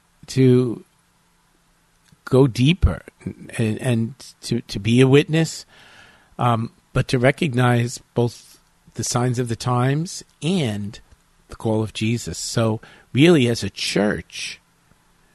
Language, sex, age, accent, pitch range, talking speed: English, male, 50-69, American, 115-135 Hz, 115 wpm